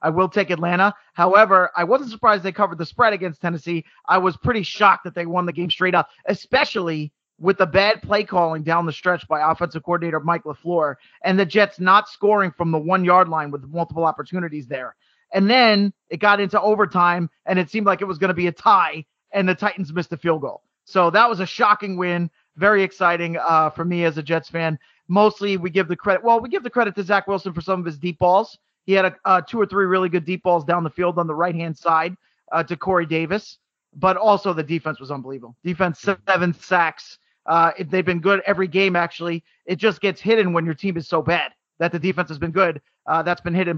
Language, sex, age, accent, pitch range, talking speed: English, male, 30-49, American, 170-200 Hz, 230 wpm